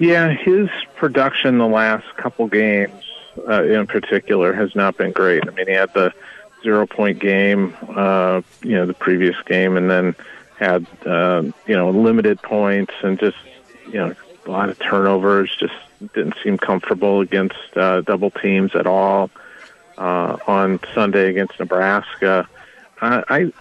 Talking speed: 150 wpm